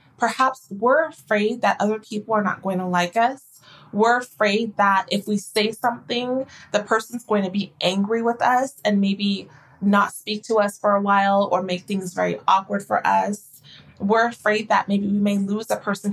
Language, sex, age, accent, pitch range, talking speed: English, female, 20-39, American, 200-230 Hz, 195 wpm